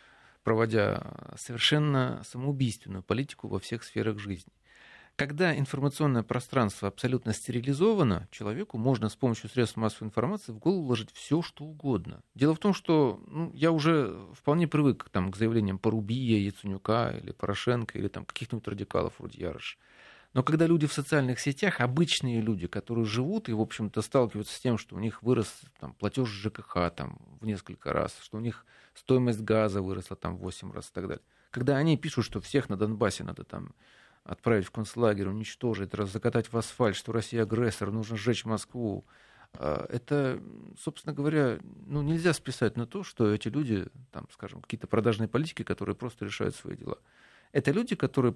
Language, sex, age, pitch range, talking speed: Russian, male, 40-59, 110-140 Hz, 165 wpm